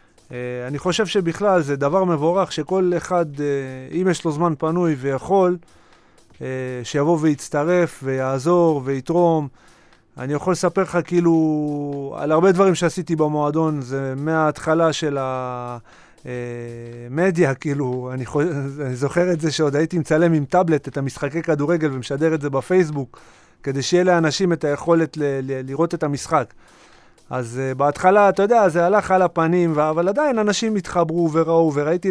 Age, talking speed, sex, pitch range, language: 30-49, 150 wpm, male, 135-170 Hz, Hebrew